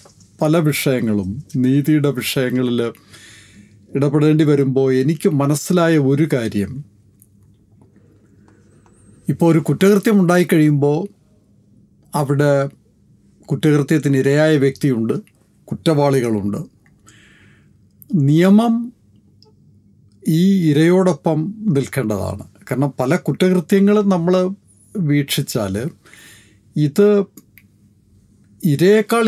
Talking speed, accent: 60 wpm, native